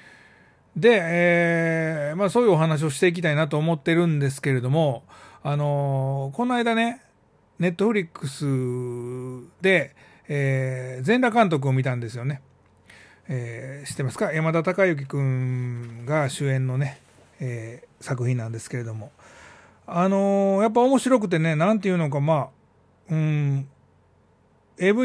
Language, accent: Japanese, native